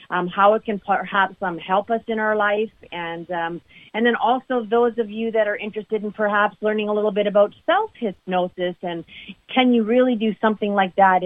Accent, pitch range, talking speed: American, 180-220 Hz, 205 wpm